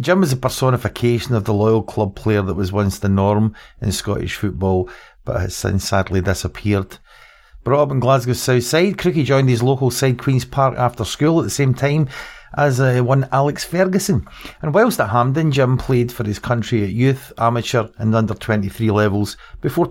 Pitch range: 105-135 Hz